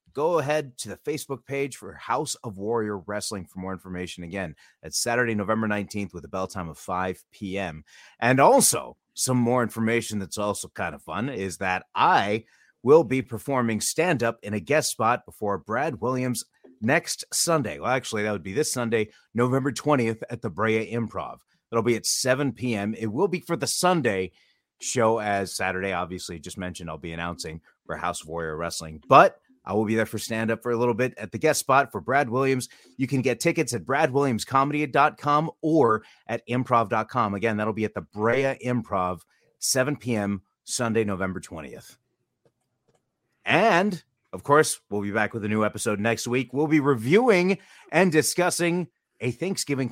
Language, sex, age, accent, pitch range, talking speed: English, male, 30-49, American, 100-140 Hz, 180 wpm